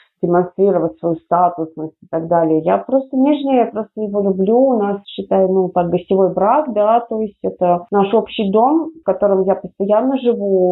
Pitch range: 180-230 Hz